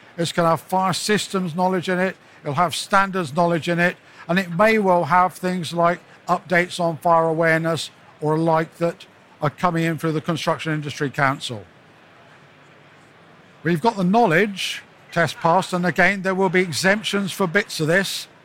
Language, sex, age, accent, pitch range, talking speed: English, male, 60-79, British, 160-185 Hz, 170 wpm